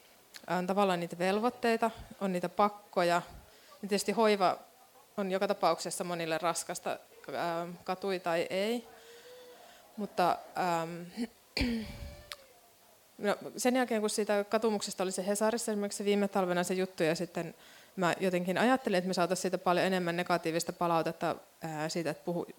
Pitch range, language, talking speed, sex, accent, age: 175-205 Hz, Finnish, 135 wpm, female, native, 20-39